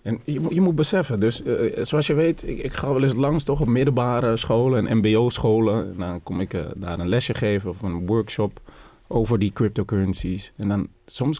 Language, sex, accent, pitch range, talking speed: Dutch, male, Dutch, 105-160 Hz, 215 wpm